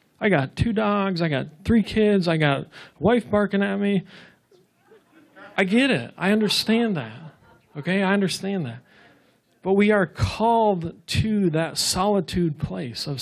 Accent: American